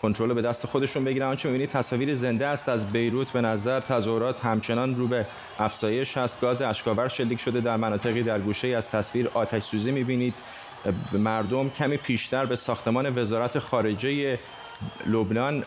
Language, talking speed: Persian, 165 wpm